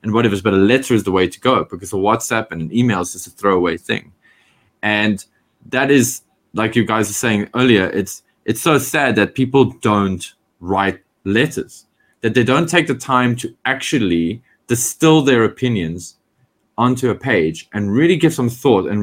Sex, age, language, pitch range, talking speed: male, 20-39, English, 105-130 Hz, 185 wpm